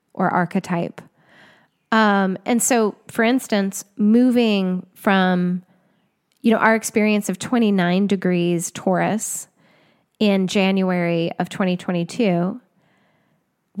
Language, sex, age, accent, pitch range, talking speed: English, female, 10-29, American, 180-225 Hz, 90 wpm